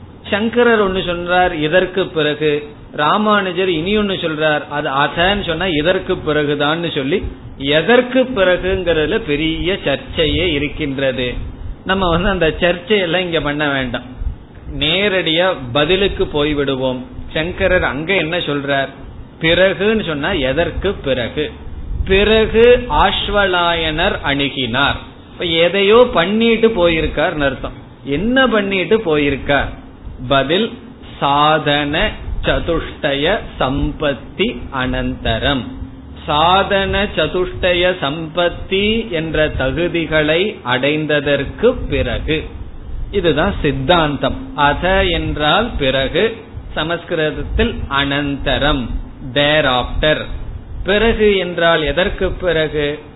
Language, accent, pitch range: Tamil, native, 140-185 Hz